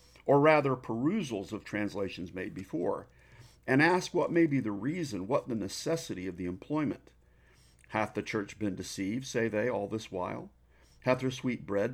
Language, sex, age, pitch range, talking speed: English, male, 50-69, 85-115 Hz, 170 wpm